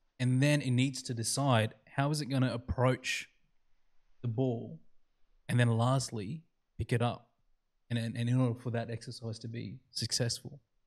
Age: 20-39